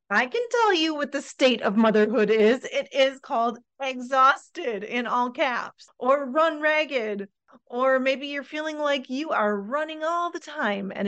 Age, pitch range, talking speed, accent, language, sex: 30-49, 210-295 Hz, 175 wpm, American, English, female